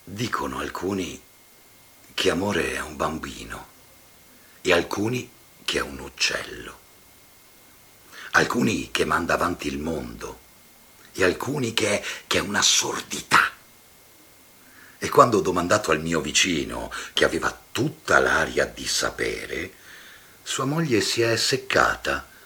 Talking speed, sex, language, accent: 120 wpm, male, Italian, native